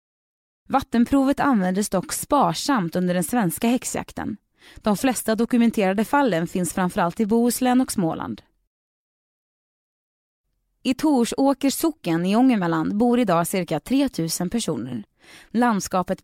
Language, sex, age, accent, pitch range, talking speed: Swedish, female, 20-39, native, 185-260 Hz, 110 wpm